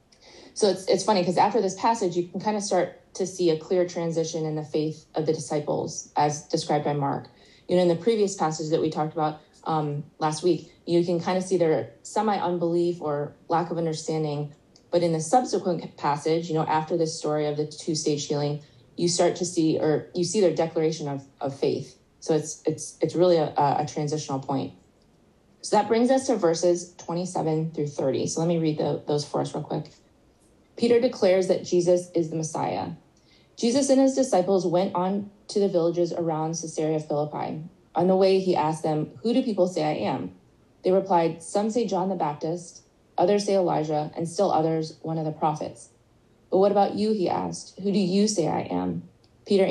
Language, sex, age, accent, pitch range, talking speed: English, female, 20-39, American, 155-185 Hz, 200 wpm